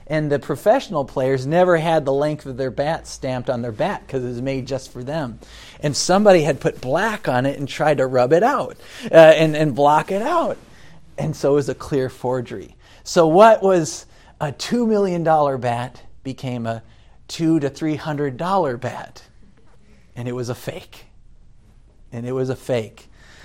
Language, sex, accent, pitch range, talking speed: English, male, American, 130-185 Hz, 180 wpm